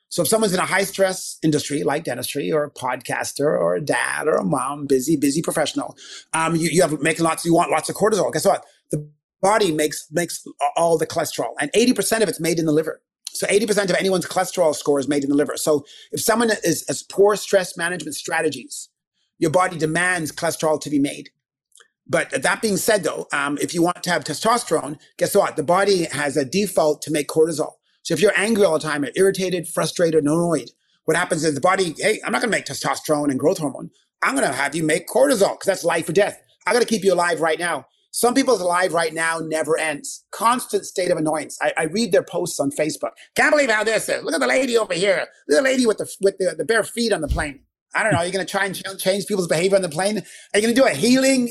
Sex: male